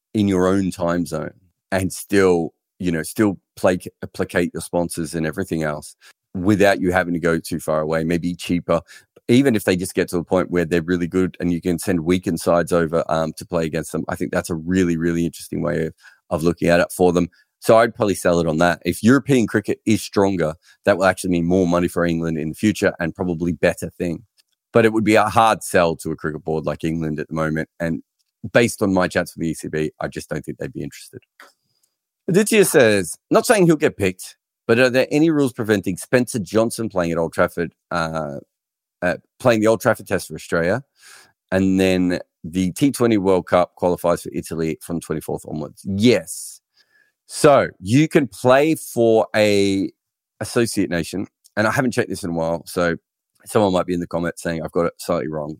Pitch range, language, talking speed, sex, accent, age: 85-105 Hz, English, 210 wpm, male, Australian, 40-59